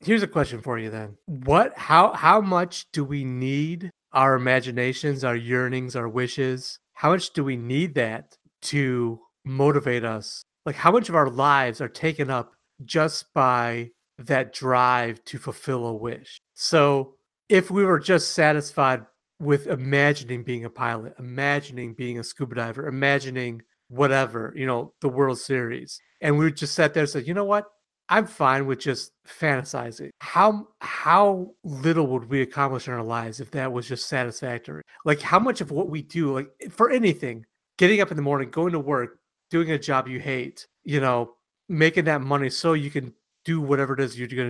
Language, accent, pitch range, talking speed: English, American, 125-155 Hz, 180 wpm